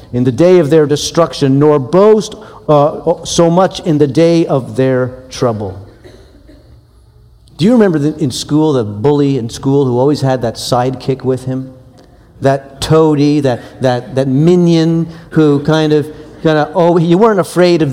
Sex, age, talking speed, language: male, 50-69, 165 wpm, English